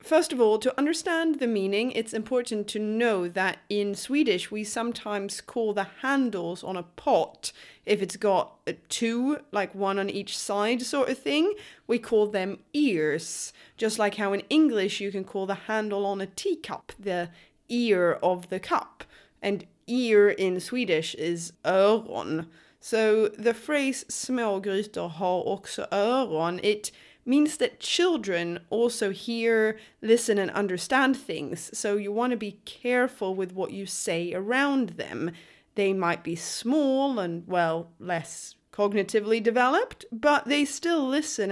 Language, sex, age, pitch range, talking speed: English, female, 20-39, 190-240 Hz, 150 wpm